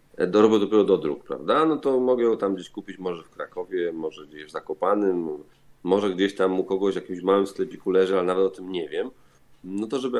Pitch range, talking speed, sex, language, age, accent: 95-125 Hz, 225 wpm, male, Polish, 40-59, native